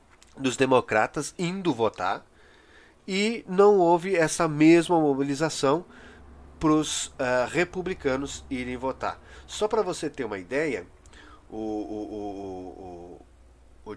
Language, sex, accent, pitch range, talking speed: Portuguese, male, Brazilian, 130-175 Hz, 100 wpm